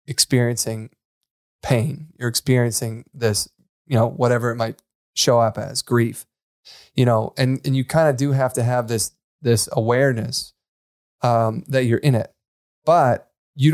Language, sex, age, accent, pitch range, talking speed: English, male, 20-39, American, 115-145 Hz, 155 wpm